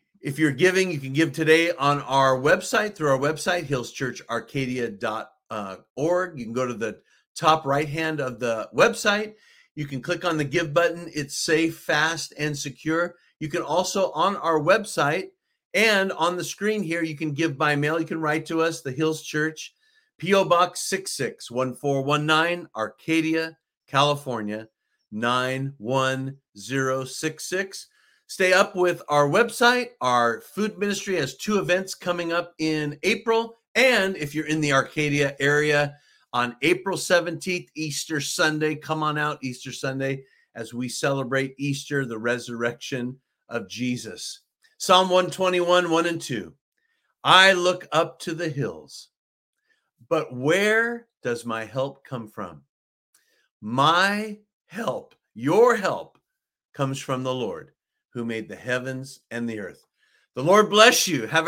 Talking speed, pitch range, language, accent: 140 wpm, 135-185 Hz, English, American